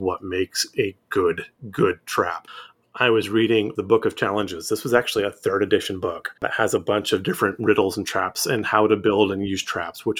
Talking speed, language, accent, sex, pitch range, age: 220 wpm, English, American, male, 100-120 Hz, 30-49